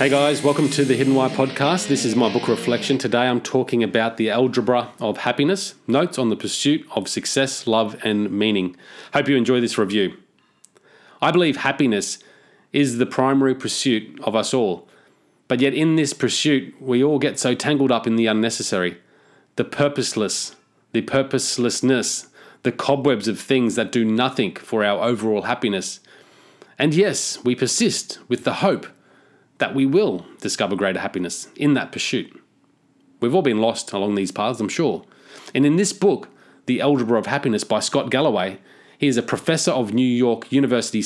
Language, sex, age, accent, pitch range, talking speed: English, male, 30-49, Australian, 115-140 Hz, 170 wpm